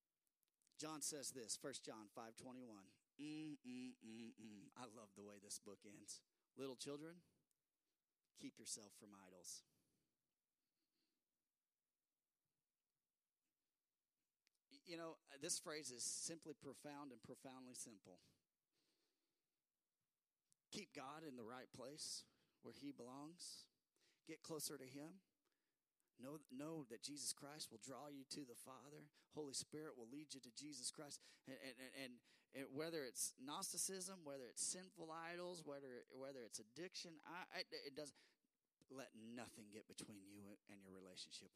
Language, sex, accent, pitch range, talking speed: English, male, American, 115-155 Hz, 140 wpm